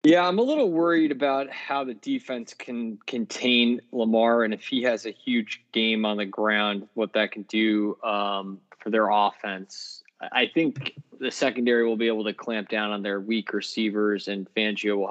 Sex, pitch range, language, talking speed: male, 100-115 Hz, English, 185 wpm